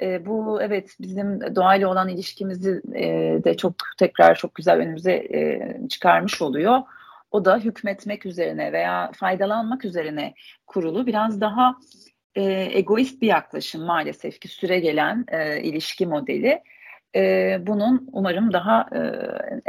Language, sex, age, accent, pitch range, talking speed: Turkish, female, 40-59, native, 180-245 Hz, 130 wpm